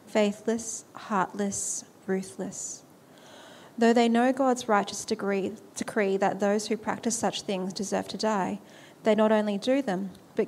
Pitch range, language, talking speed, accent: 195-230 Hz, English, 145 wpm, Australian